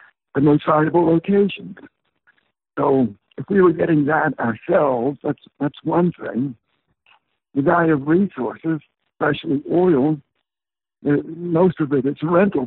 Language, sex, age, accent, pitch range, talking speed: English, male, 60-79, American, 140-175 Hz, 125 wpm